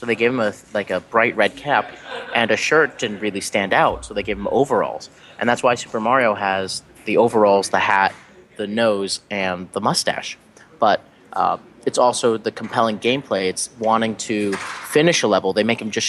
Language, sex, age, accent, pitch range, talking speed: English, male, 30-49, American, 100-115 Hz, 200 wpm